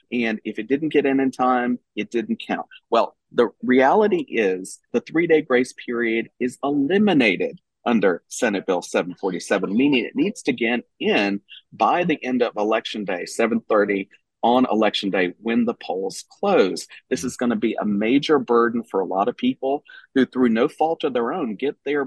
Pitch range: 110-140 Hz